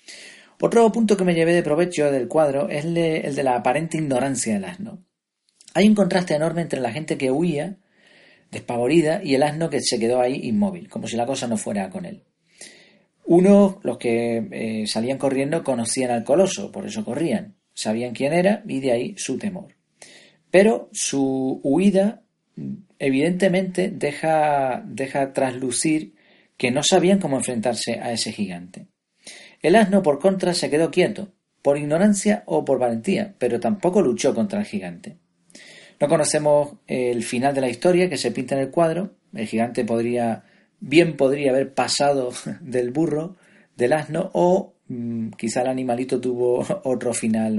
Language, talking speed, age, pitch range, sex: Spanish, 160 wpm, 40-59, 125-190 Hz, male